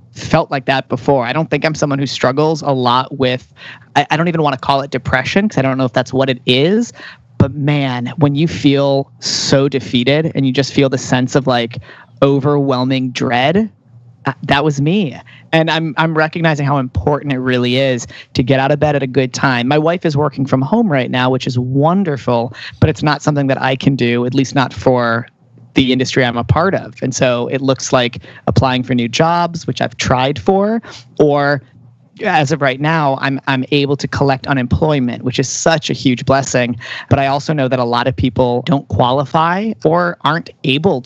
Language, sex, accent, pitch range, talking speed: English, male, American, 125-150 Hz, 210 wpm